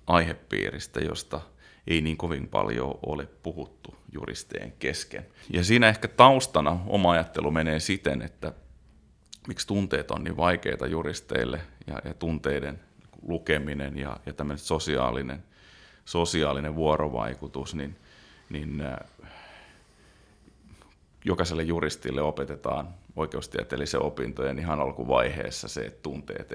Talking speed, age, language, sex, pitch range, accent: 105 wpm, 30-49, Finnish, male, 70-85 Hz, native